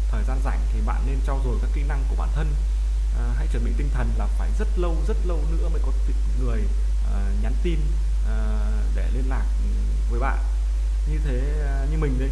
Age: 20-39